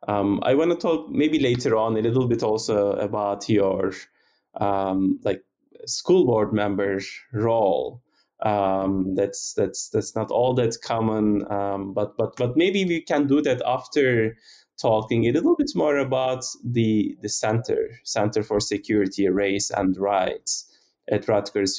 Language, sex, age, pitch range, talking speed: English, male, 20-39, 100-125 Hz, 150 wpm